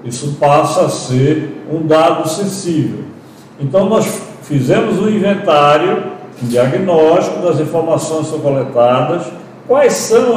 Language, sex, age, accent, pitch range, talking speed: Portuguese, male, 60-79, Brazilian, 145-200 Hz, 120 wpm